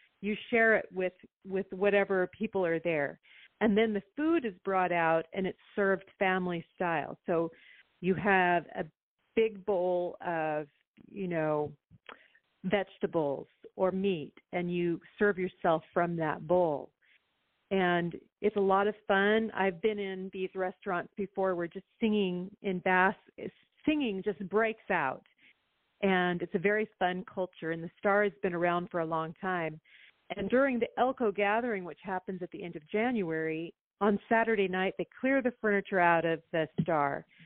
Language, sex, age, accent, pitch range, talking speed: English, female, 40-59, American, 175-210 Hz, 160 wpm